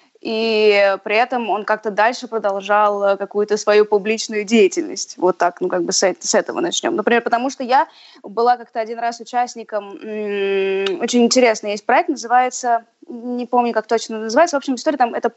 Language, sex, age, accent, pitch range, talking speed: Russian, female, 20-39, native, 215-280 Hz, 175 wpm